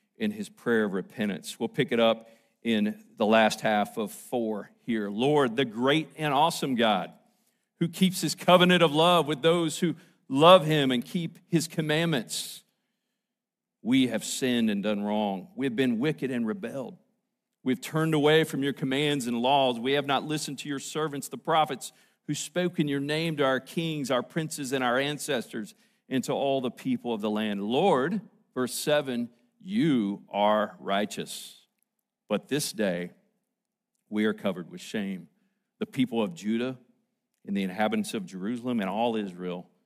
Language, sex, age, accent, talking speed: English, male, 50-69, American, 170 wpm